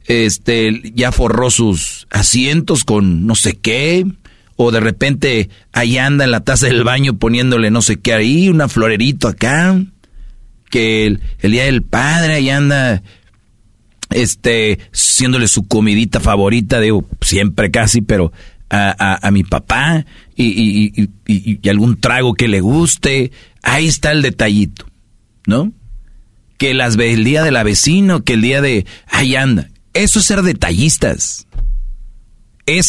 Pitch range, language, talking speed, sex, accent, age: 110-150 Hz, Spanish, 145 wpm, male, Mexican, 40-59